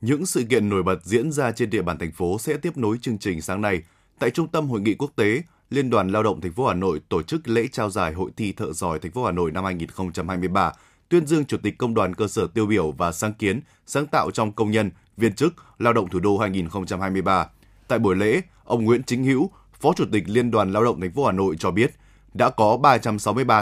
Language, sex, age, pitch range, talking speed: Vietnamese, male, 20-39, 95-130 Hz, 245 wpm